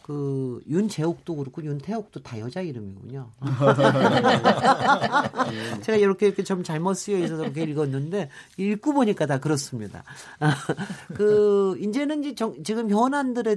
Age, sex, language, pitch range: 40-59, male, Korean, 140-210 Hz